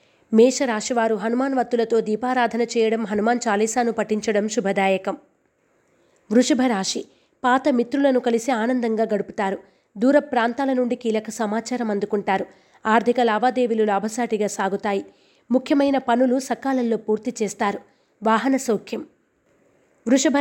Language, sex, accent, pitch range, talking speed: Telugu, female, native, 215-255 Hz, 100 wpm